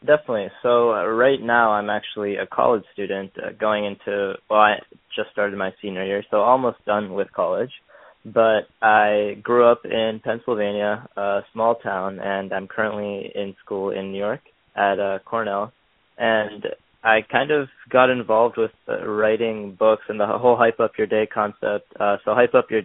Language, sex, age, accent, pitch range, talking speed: English, male, 20-39, American, 100-110 Hz, 180 wpm